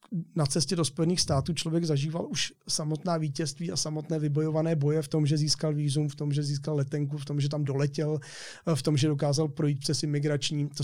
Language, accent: Czech, native